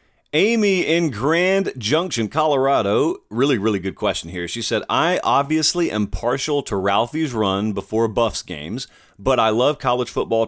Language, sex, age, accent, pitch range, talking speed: English, male, 40-59, American, 105-140 Hz, 155 wpm